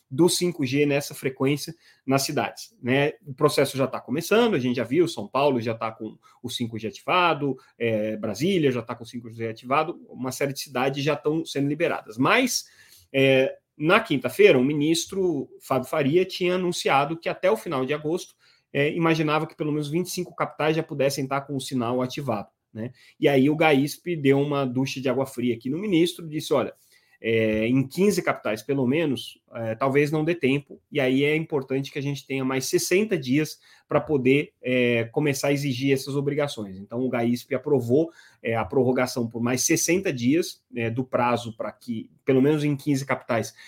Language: Portuguese